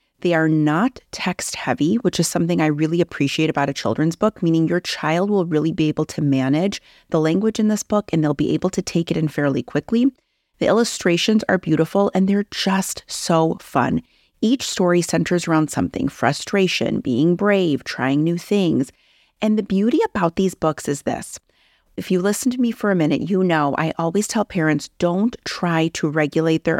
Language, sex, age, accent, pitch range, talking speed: English, female, 30-49, American, 150-200 Hz, 195 wpm